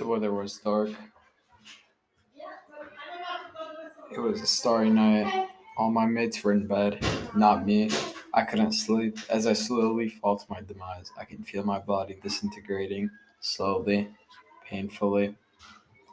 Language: English